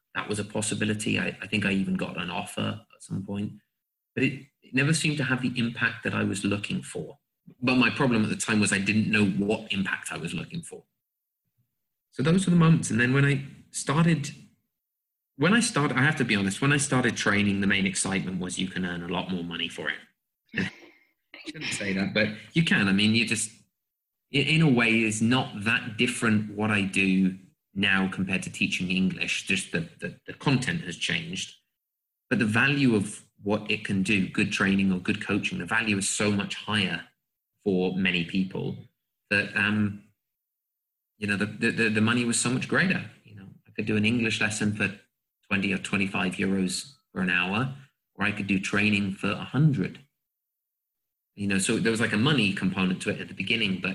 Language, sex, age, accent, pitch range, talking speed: English, male, 20-39, British, 95-120 Hz, 210 wpm